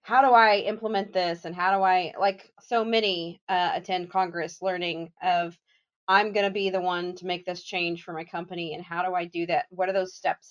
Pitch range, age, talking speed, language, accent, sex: 180-210 Hz, 30-49, 230 wpm, English, American, female